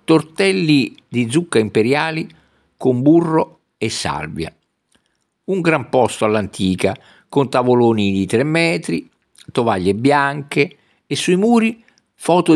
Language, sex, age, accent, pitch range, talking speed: Italian, male, 50-69, native, 100-155 Hz, 110 wpm